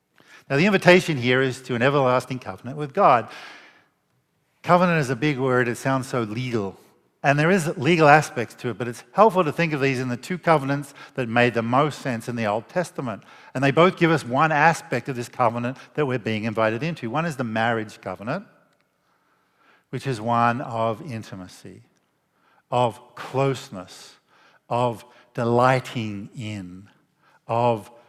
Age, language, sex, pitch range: 50-69, English, male, 120-150 Hz